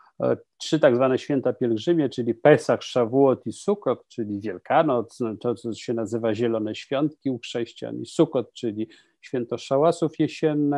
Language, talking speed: Polish, 140 wpm